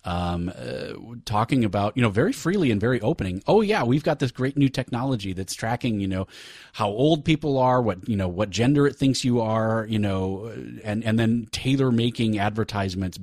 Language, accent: English, American